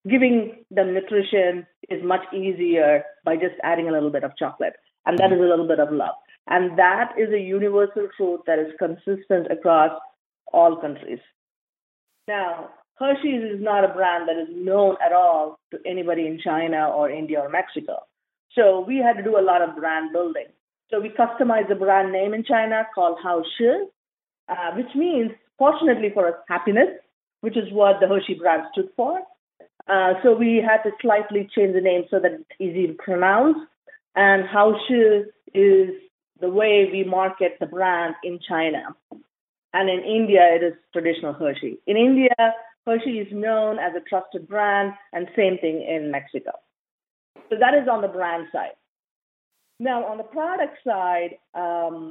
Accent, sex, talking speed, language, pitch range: Indian, female, 170 wpm, English, 175-225 Hz